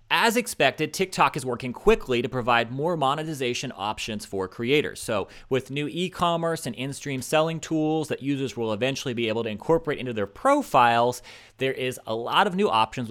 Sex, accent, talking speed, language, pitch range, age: male, American, 180 wpm, English, 115-150 Hz, 30-49